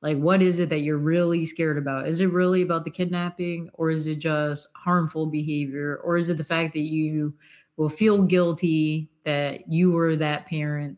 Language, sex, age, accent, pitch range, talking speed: English, female, 30-49, American, 150-175 Hz, 195 wpm